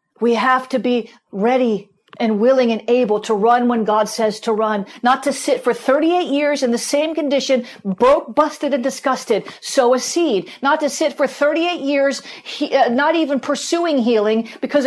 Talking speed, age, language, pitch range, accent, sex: 185 wpm, 50-69, English, 250-300 Hz, American, female